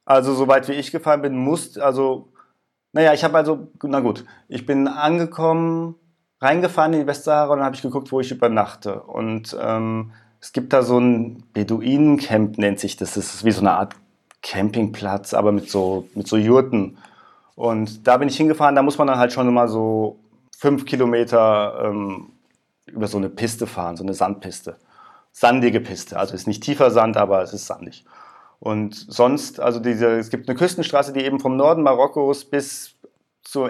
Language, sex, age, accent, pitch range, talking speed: German, male, 30-49, German, 105-135 Hz, 185 wpm